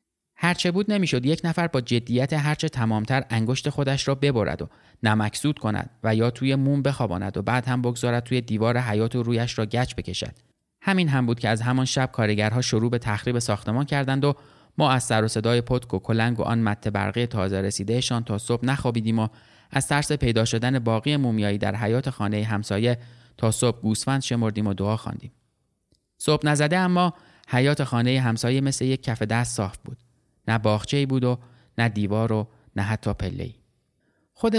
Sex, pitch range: male, 110-135 Hz